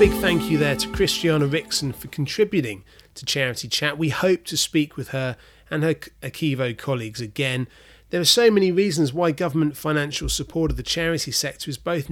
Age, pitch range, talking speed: 30-49, 135-170 Hz, 190 wpm